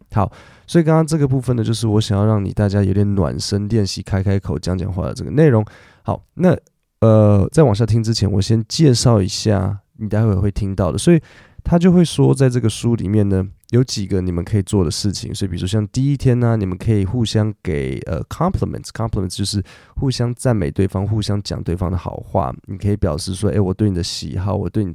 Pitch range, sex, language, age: 95-120 Hz, male, Chinese, 20-39